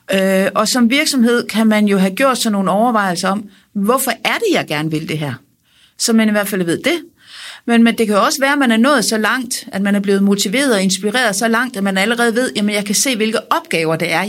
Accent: native